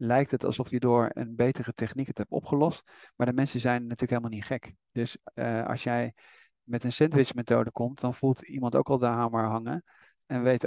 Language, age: Dutch, 50-69